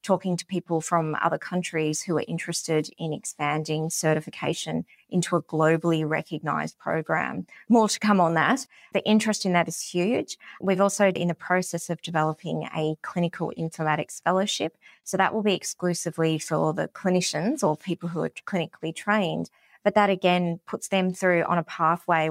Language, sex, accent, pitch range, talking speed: English, female, Australian, 165-190 Hz, 170 wpm